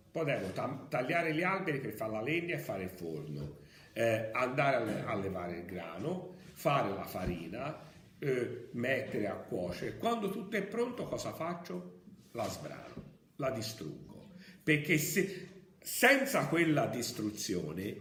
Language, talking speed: Italian, 135 wpm